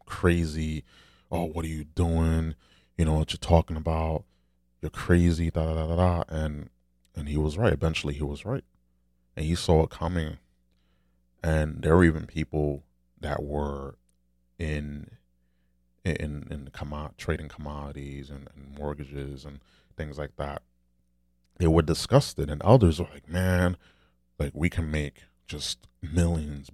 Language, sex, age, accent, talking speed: English, male, 30-49, American, 140 wpm